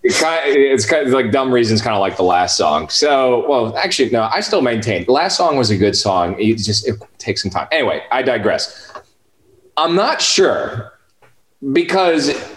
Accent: American